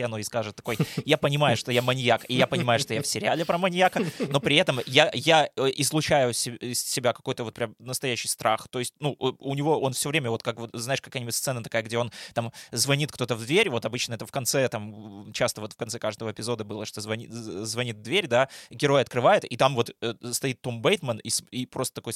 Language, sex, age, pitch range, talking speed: Russian, male, 20-39, 115-135 Hz, 225 wpm